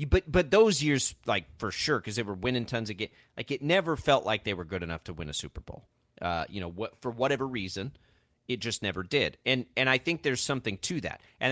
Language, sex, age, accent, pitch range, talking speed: English, male, 30-49, American, 95-140 Hz, 250 wpm